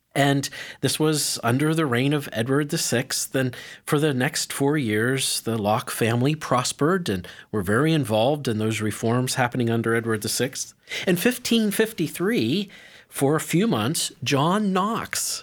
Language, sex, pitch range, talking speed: English, male, 115-155 Hz, 150 wpm